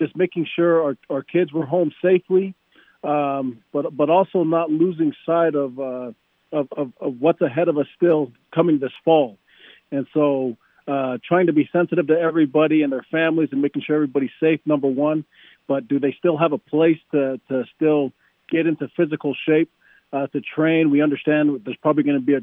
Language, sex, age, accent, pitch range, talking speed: English, male, 40-59, American, 140-160 Hz, 195 wpm